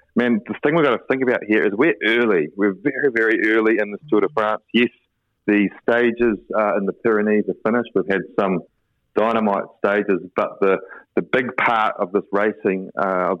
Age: 30-49